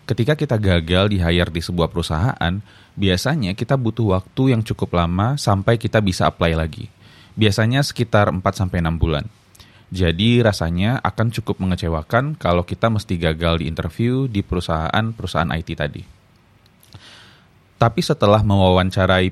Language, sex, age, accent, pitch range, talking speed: Indonesian, male, 20-39, native, 90-115 Hz, 125 wpm